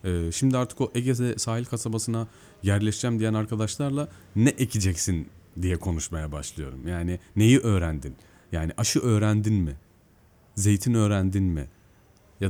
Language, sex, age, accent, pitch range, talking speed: Turkish, male, 40-59, native, 90-120 Hz, 120 wpm